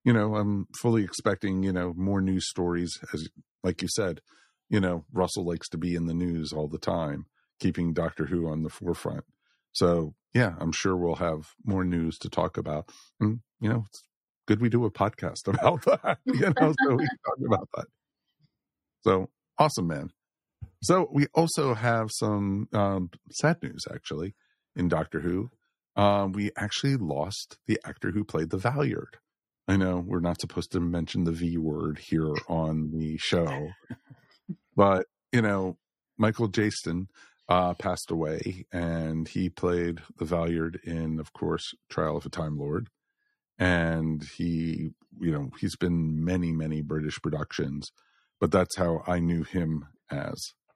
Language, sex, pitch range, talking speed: English, male, 80-100 Hz, 165 wpm